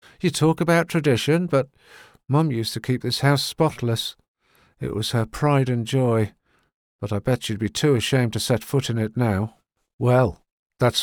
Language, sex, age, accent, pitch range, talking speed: English, male, 50-69, British, 105-140 Hz, 180 wpm